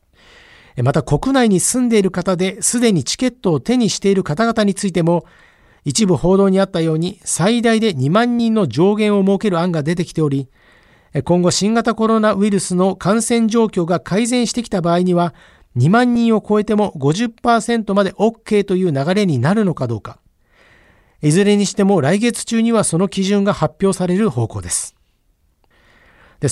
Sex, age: male, 50-69